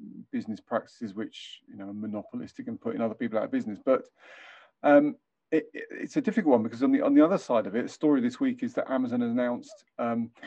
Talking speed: 220 wpm